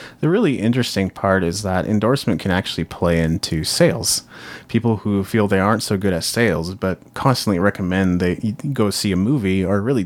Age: 30-49